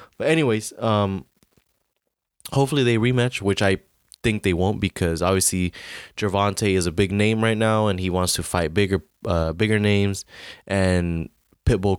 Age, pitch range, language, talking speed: 20-39, 85-100 Hz, English, 155 wpm